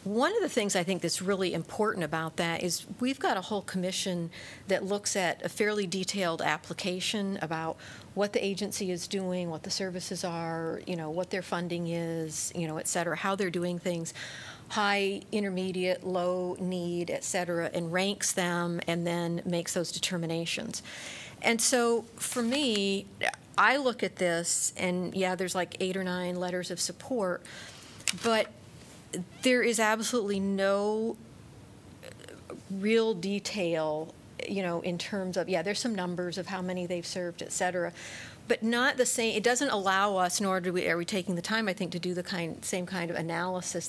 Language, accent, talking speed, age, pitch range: English, American, 175 wpm, 40-59, 175-200 Hz